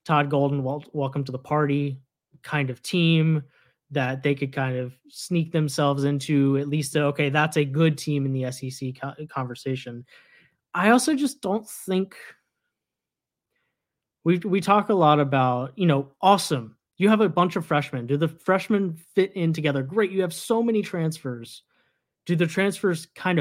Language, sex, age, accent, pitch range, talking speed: English, male, 20-39, American, 140-180 Hz, 165 wpm